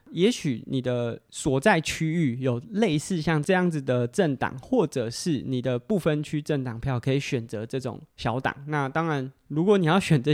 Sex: male